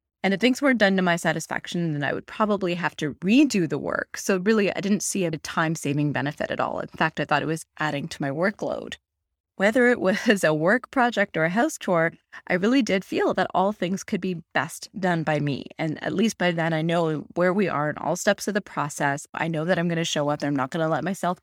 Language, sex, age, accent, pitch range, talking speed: English, female, 20-39, American, 160-215 Hz, 250 wpm